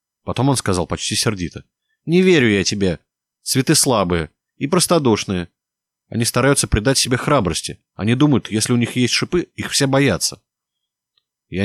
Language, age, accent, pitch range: Russian, 20-39, native, 90-145 Hz